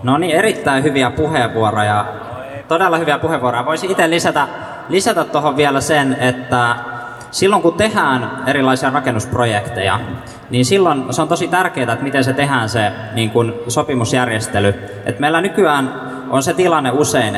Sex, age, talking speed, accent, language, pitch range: male, 20-39, 145 wpm, native, Finnish, 120-145 Hz